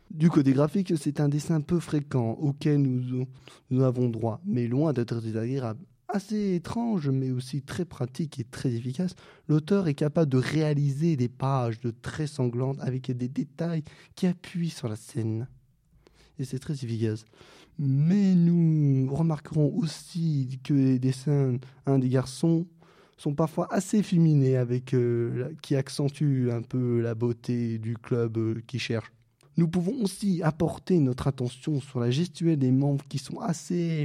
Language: French